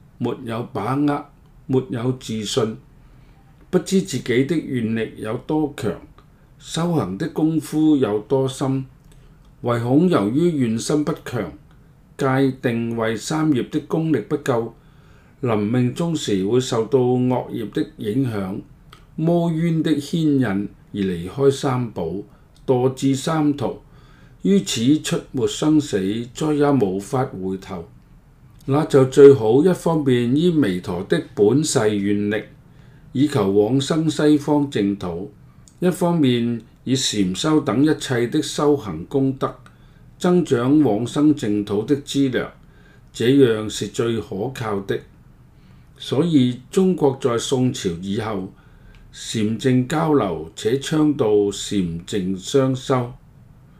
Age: 50-69